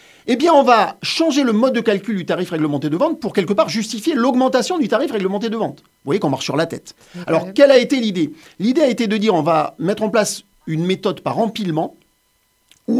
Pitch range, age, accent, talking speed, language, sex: 160-235 Hz, 50-69, French, 235 wpm, French, male